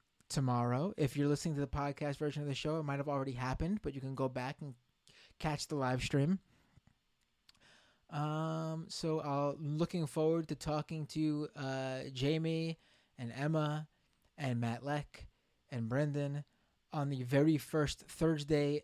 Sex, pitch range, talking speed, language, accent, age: male, 145-185 Hz, 155 wpm, English, American, 20-39